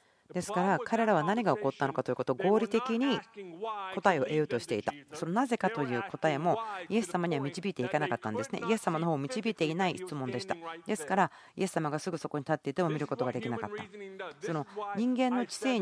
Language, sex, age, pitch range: Japanese, female, 40-59, 150-205 Hz